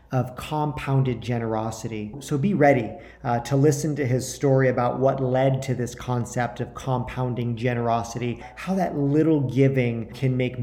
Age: 40-59